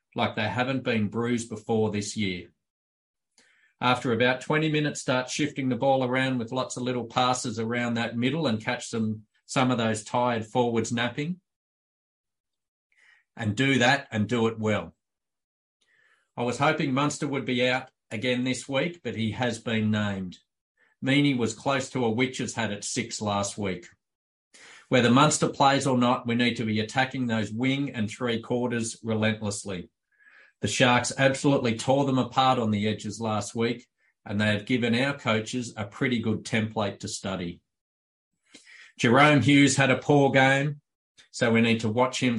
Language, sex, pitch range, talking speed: English, male, 110-130 Hz, 165 wpm